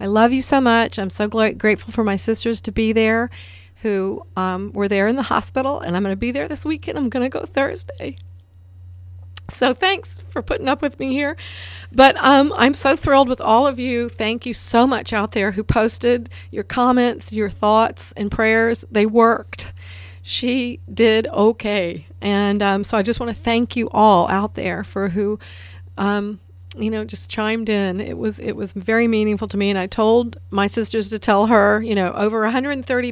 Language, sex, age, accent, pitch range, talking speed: English, female, 40-59, American, 190-240 Hz, 200 wpm